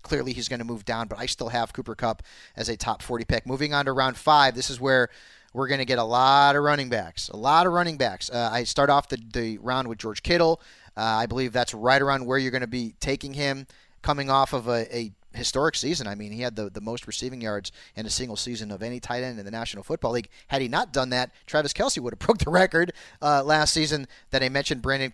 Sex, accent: male, American